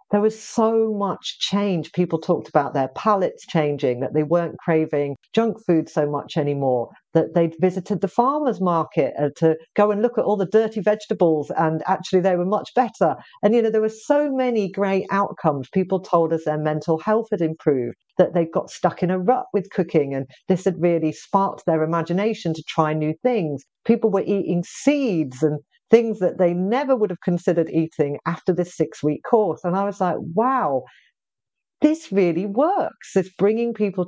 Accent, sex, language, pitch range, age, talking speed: British, female, English, 155-200 Hz, 50-69, 185 wpm